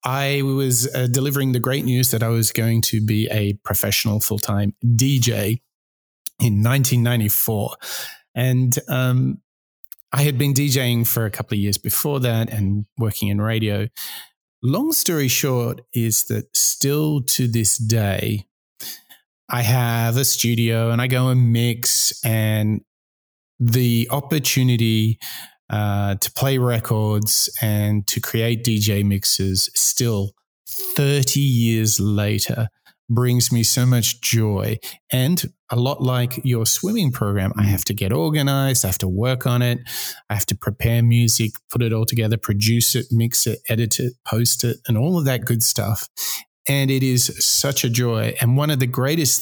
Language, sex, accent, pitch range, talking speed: English, male, Australian, 110-130 Hz, 155 wpm